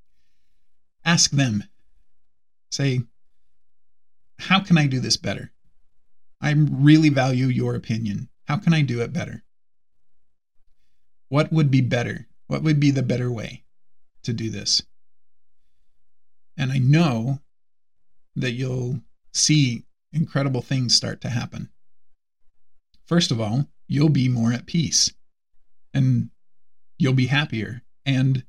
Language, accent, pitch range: English, American, 105-140 Hz